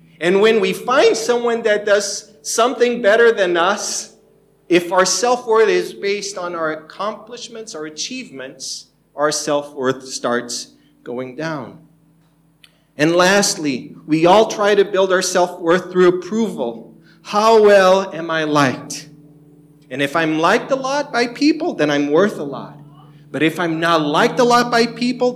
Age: 40-59